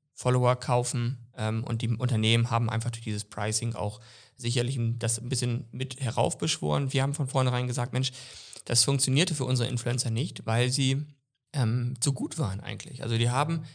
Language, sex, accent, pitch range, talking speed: German, male, German, 115-140 Hz, 180 wpm